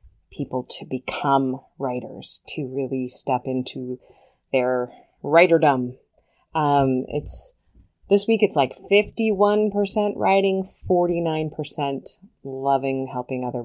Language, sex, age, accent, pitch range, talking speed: English, female, 20-39, American, 125-165 Hz, 95 wpm